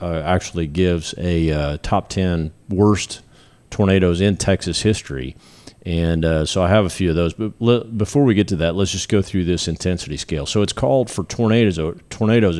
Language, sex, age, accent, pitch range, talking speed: English, male, 40-59, American, 80-100 Hz, 200 wpm